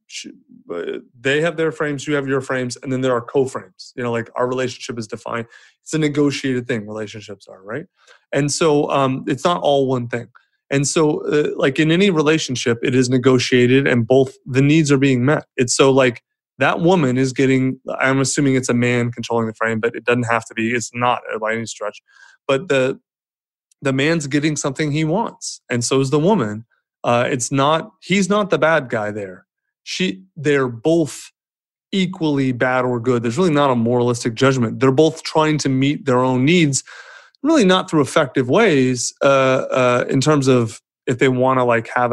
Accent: American